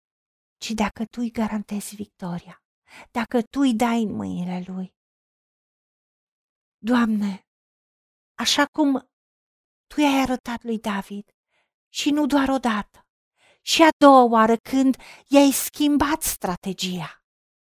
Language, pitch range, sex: Romanian, 215-275 Hz, female